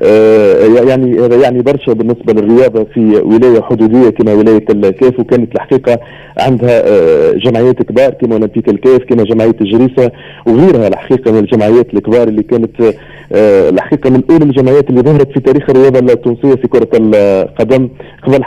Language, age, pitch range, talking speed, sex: Arabic, 40-59, 115-145 Hz, 130 wpm, male